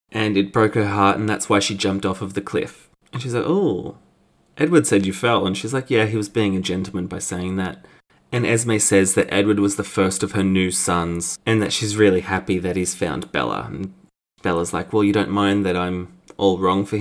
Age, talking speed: 20-39, 235 wpm